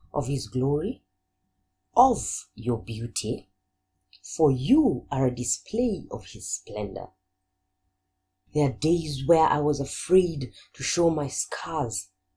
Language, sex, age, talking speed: English, female, 40-59, 120 wpm